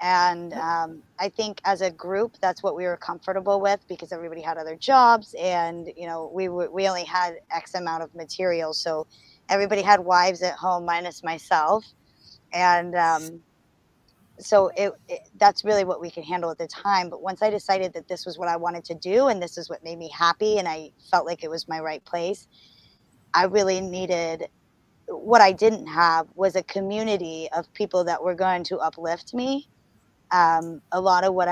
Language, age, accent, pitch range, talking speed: English, 20-39, American, 165-195 Hz, 195 wpm